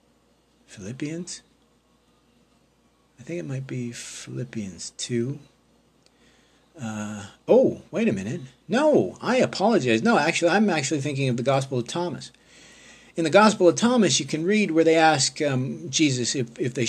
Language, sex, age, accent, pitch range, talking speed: English, male, 50-69, American, 110-135 Hz, 150 wpm